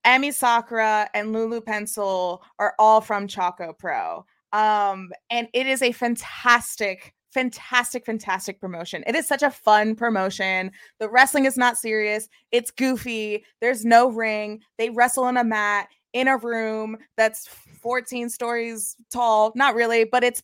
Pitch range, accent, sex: 205-245 Hz, American, female